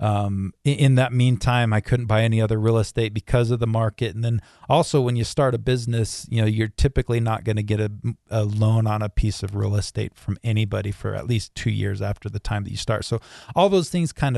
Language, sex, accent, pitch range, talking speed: English, male, American, 110-130 Hz, 240 wpm